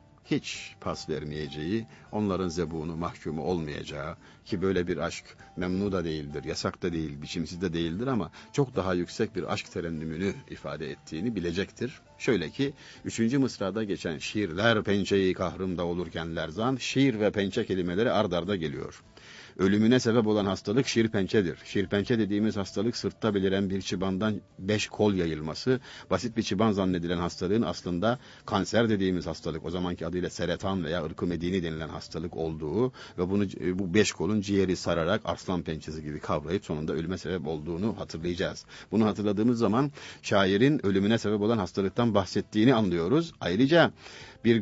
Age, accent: 50-69, native